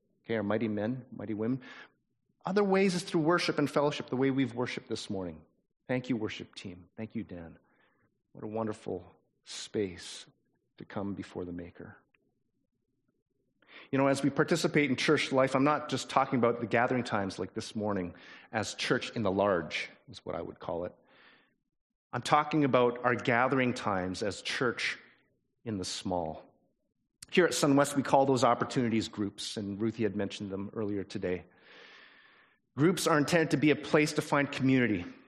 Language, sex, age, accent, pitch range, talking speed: English, male, 40-59, American, 100-135 Hz, 170 wpm